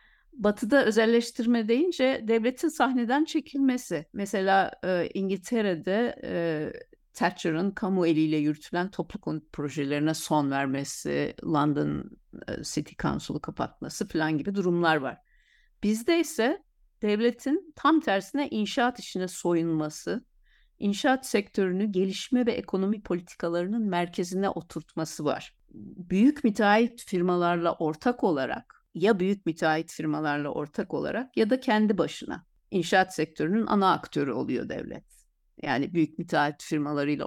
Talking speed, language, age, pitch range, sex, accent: 115 wpm, Turkish, 50-69, 155-225 Hz, female, native